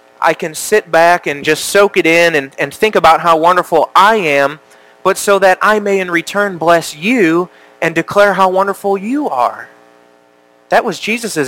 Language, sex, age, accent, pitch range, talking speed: English, male, 30-49, American, 135-190 Hz, 185 wpm